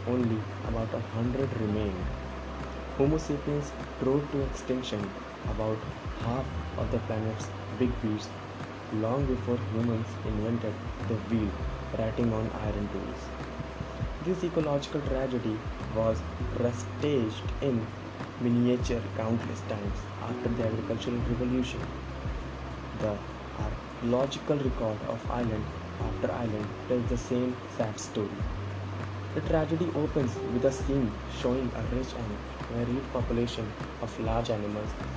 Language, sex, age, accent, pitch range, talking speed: English, male, 20-39, Indian, 100-125 Hz, 115 wpm